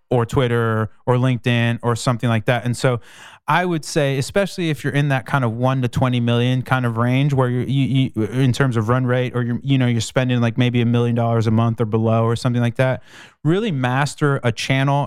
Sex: male